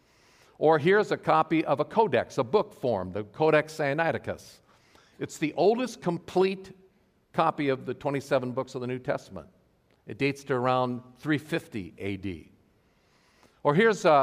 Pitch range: 115-155 Hz